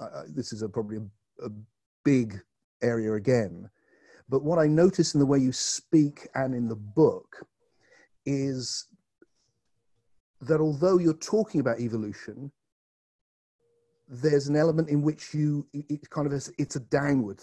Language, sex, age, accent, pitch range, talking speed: English, male, 50-69, British, 115-155 Hz, 150 wpm